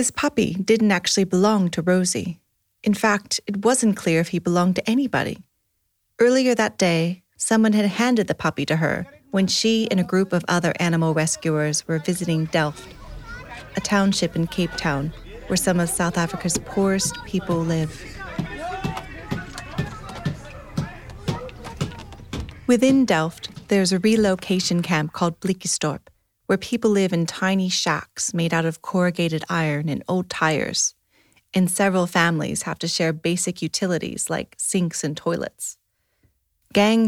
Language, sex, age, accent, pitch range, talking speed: English, female, 30-49, American, 160-195 Hz, 140 wpm